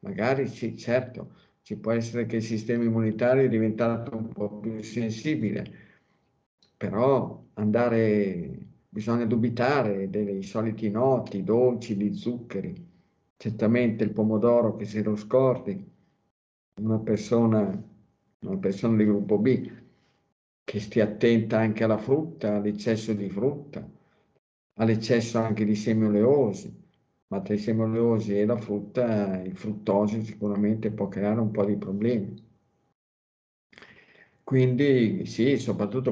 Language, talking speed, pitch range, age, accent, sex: Italian, 120 wpm, 105-115 Hz, 50-69, native, male